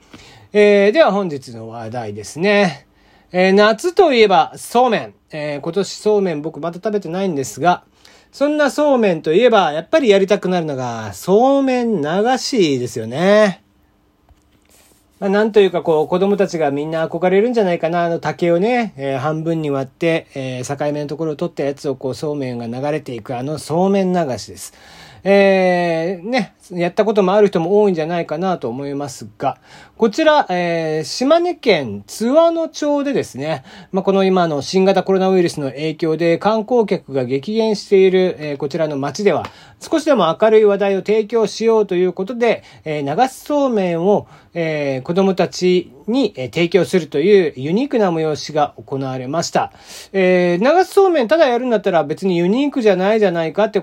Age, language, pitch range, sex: 40-59, Japanese, 150-210 Hz, male